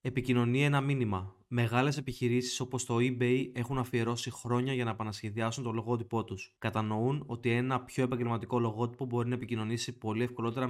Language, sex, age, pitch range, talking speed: Greek, male, 20-39, 115-130 Hz, 155 wpm